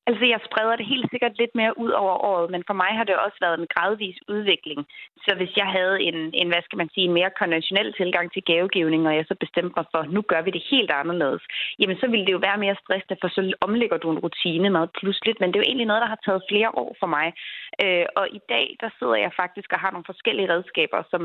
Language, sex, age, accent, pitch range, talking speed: Danish, female, 30-49, native, 175-210 Hz, 260 wpm